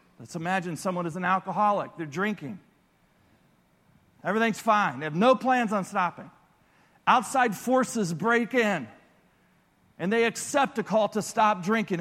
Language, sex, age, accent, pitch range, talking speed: English, male, 40-59, American, 195-255 Hz, 140 wpm